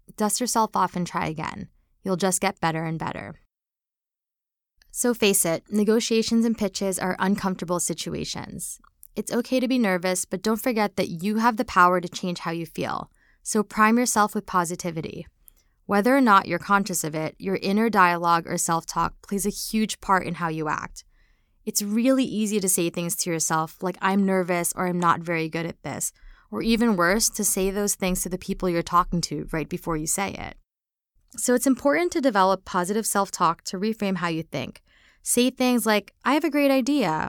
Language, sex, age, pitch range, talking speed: English, female, 20-39, 175-220 Hz, 195 wpm